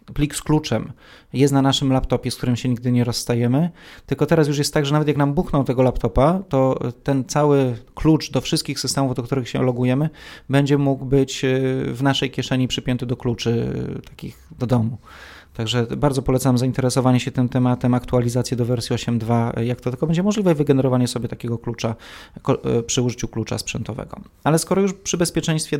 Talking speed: 180 wpm